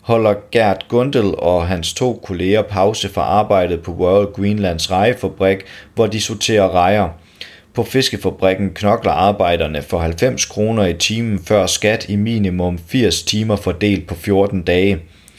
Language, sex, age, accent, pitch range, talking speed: Danish, male, 30-49, native, 90-110 Hz, 145 wpm